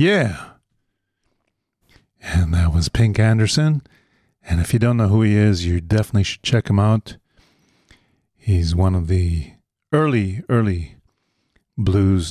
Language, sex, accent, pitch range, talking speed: English, male, American, 95-115 Hz, 130 wpm